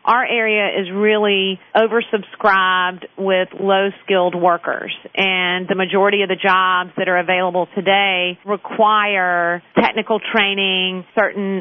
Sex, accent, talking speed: female, American, 115 wpm